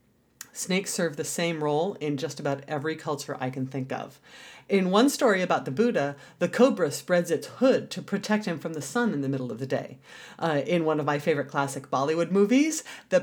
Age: 40-59